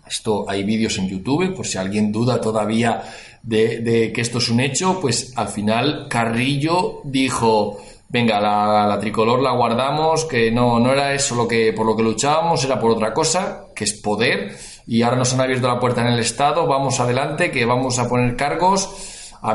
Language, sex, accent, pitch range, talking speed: Spanish, male, Spanish, 105-135 Hz, 195 wpm